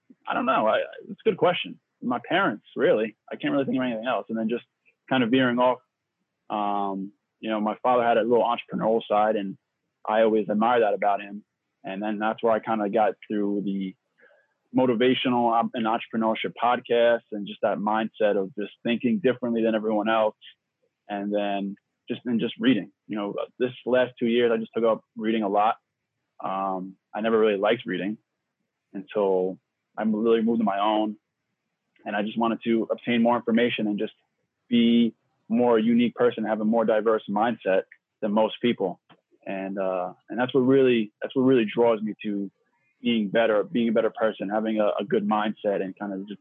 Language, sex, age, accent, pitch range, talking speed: English, male, 20-39, American, 105-120 Hz, 185 wpm